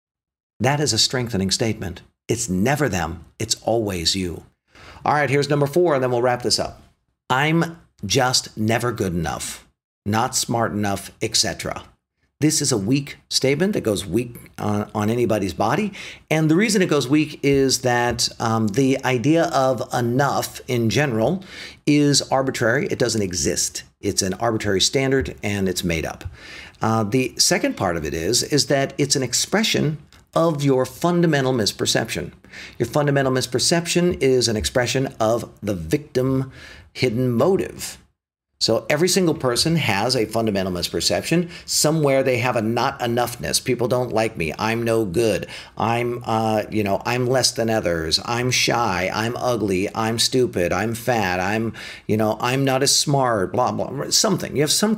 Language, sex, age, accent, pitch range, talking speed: English, male, 50-69, American, 110-140 Hz, 165 wpm